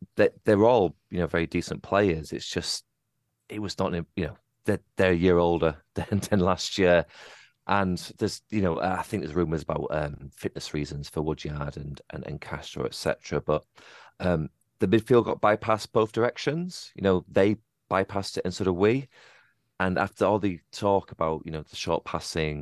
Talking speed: 190 wpm